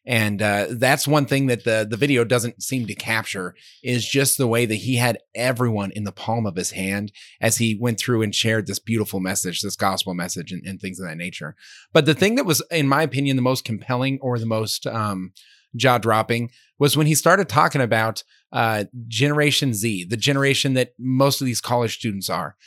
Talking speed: 210 wpm